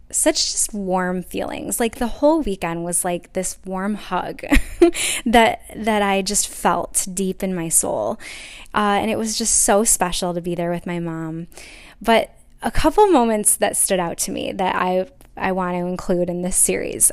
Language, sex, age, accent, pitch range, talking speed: English, female, 10-29, American, 185-225 Hz, 185 wpm